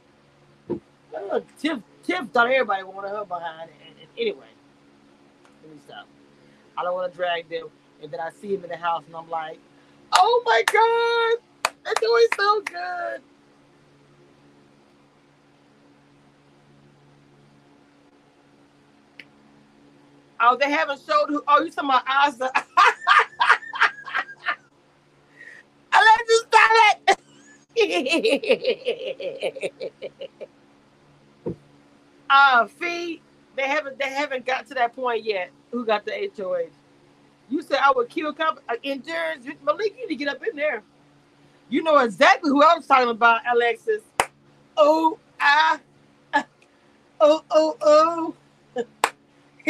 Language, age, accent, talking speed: English, 30-49, American, 125 wpm